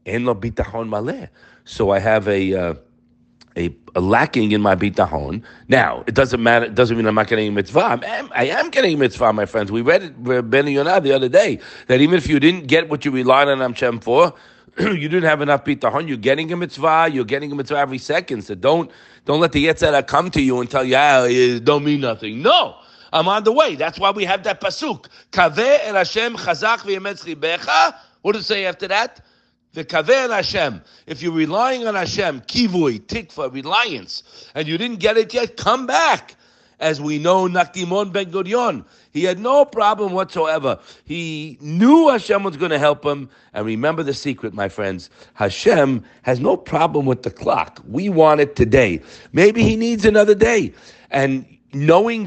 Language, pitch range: English, 125-185 Hz